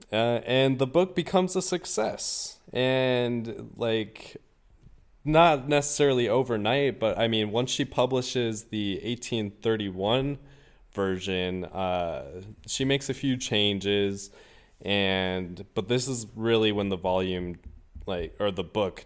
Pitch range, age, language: 90-120 Hz, 20-39, English